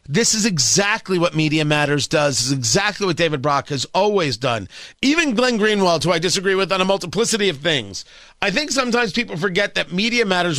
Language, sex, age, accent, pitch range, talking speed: English, male, 40-59, American, 165-215 Hz, 205 wpm